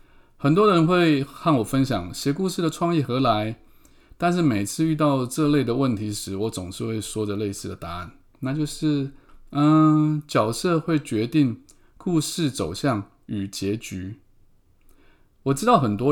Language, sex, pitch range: Chinese, male, 105-145 Hz